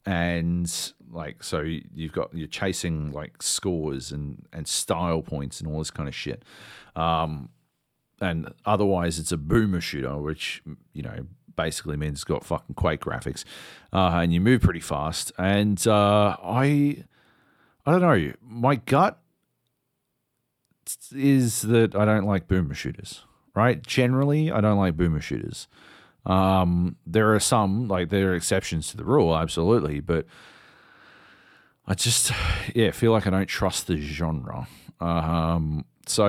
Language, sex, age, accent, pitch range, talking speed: English, male, 40-59, Australian, 80-105 Hz, 145 wpm